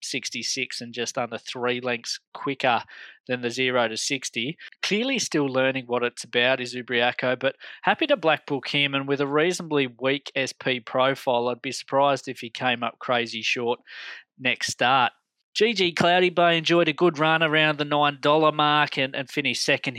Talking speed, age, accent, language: 175 wpm, 20-39, Australian, English